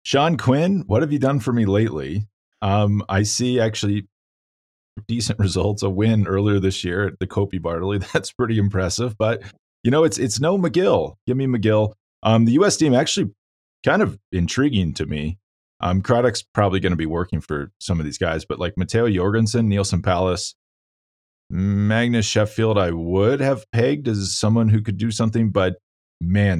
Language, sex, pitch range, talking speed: English, male, 90-110 Hz, 180 wpm